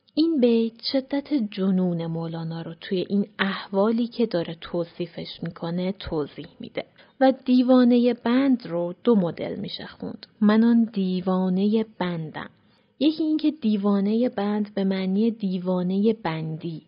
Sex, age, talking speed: female, 30-49, 125 wpm